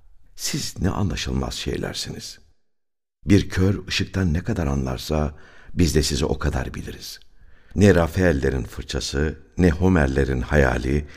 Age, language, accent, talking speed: 60-79, Turkish, native, 120 wpm